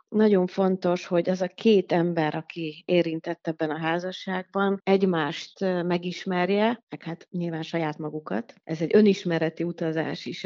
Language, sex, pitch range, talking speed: Hungarian, female, 170-200 Hz, 130 wpm